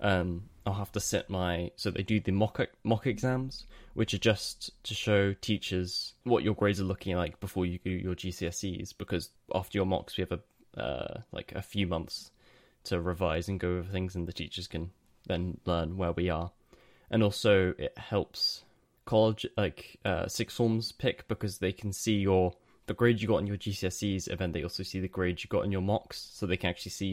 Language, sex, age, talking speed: English, male, 10-29, 210 wpm